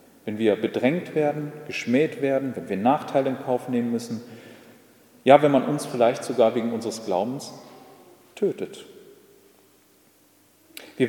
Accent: German